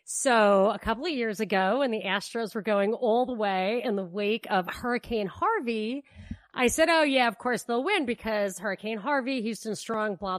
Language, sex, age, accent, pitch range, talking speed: English, female, 30-49, American, 205-275 Hz, 195 wpm